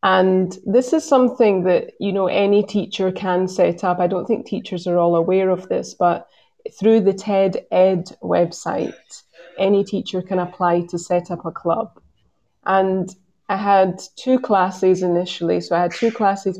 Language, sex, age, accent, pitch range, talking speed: English, female, 20-39, British, 175-200 Hz, 165 wpm